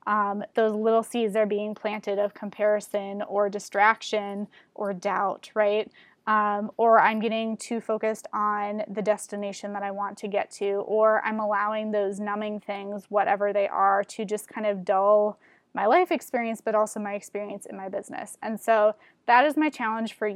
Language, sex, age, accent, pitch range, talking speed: English, female, 20-39, American, 205-225 Hz, 175 wpm